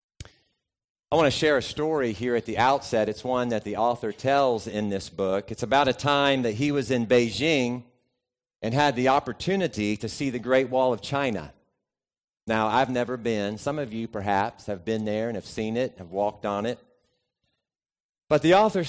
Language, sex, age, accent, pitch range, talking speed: English, male, 40-59, American, 115-165 Hz, 195 wpm